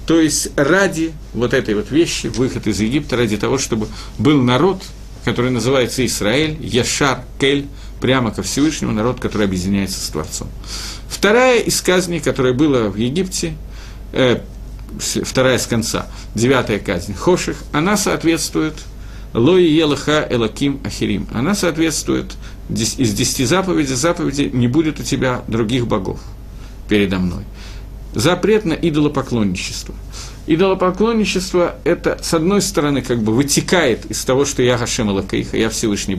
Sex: male